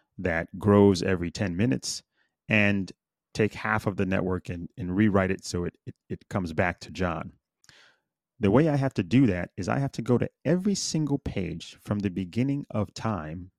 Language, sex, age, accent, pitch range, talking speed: English, male, 30-49, American, 95-120 Hz, 195 wpm